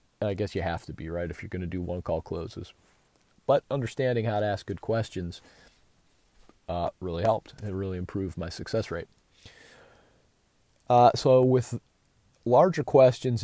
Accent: American